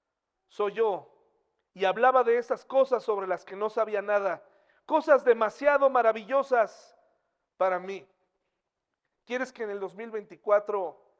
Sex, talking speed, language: male, 125 wpm, Spanish